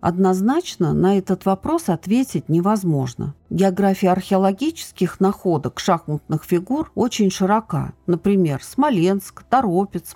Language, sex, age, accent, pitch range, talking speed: Russian, female, 50-69, native, 160-205 Hz, 95 wpm